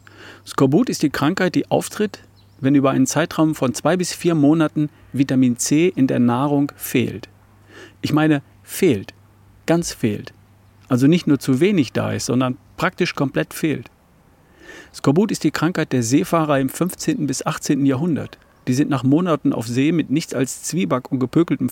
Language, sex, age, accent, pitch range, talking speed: German, male, 40-59, German, 125-155 Hz, 165 wpm